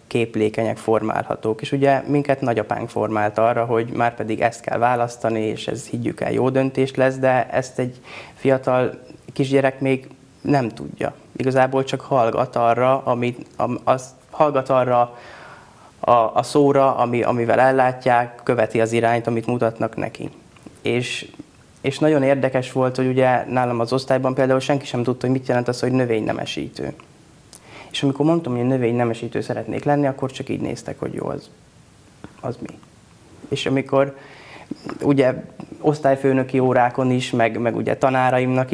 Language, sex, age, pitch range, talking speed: Hungarian, male, 20-39, 120-135 Hz, 145 wpm